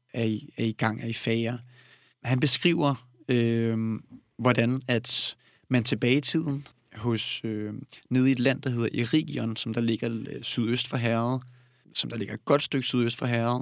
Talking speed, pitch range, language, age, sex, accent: 180 wpm, 115-135 Hz, Danish, 30-49, male, native